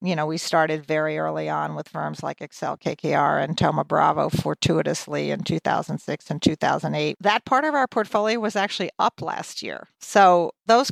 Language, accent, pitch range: English, American, 160-205 Hz